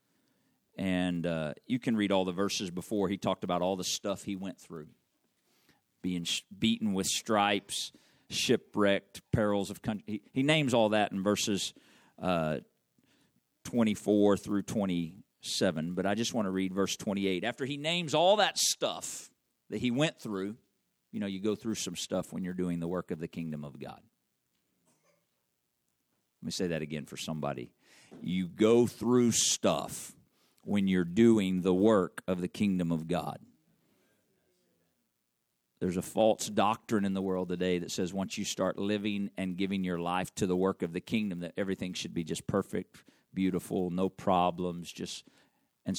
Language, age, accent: English, 50-69, American